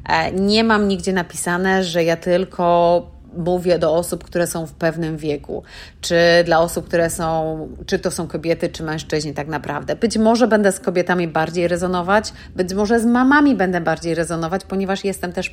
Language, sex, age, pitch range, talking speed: Polish, female, 30-49, 175-210 Hz, 175 wpm